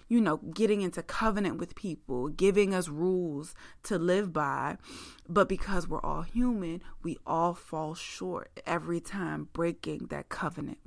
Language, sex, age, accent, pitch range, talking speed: English, female, 20-39, American, 165-205 Hz, 150 wpm